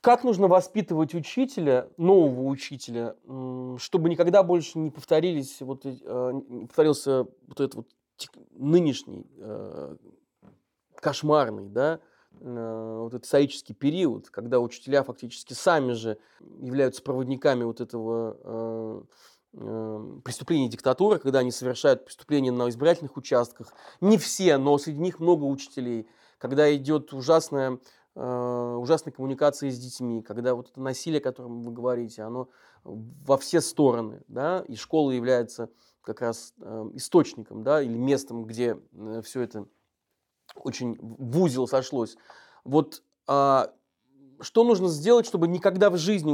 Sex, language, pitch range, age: male, Russian, 120-155 Hz, 20-39